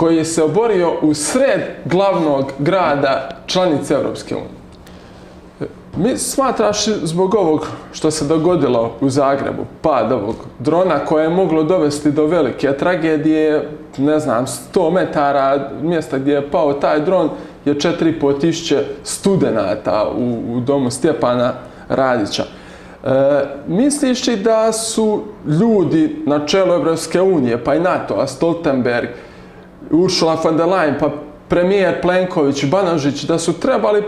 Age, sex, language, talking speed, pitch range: 20-39, male, Croatian, 120 wpm, 150-195 Hz